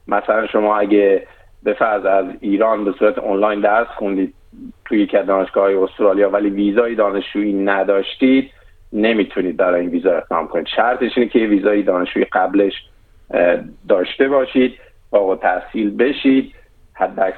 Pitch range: 100-120 Hz